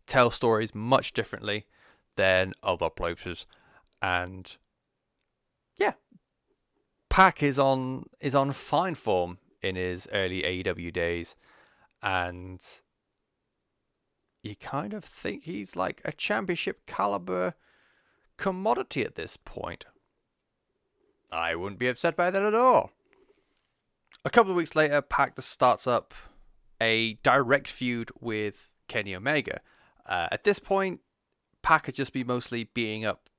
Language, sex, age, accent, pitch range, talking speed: English, male, 30-49, British, 100-135 Hz, 120 wpm